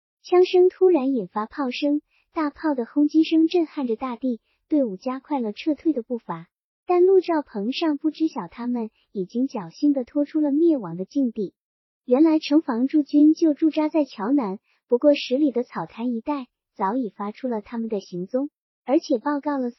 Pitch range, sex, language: 220-300 Hz, male, Chinese